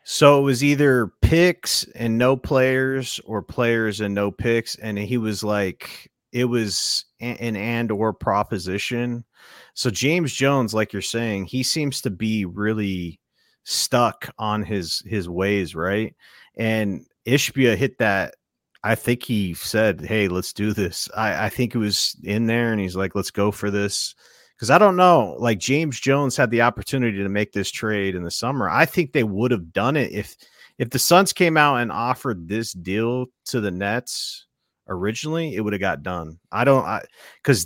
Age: 30-49